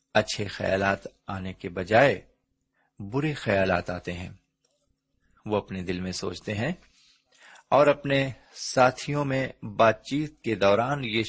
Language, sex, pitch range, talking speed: Urdu, male, 100-135 Hz, 130 wpm